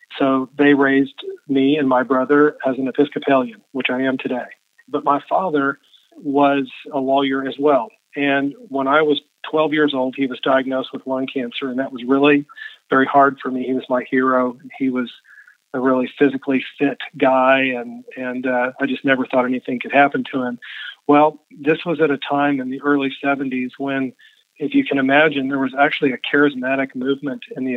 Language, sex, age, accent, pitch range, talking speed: English, male, 40-59, American, 130-145 Hz, 190 wpm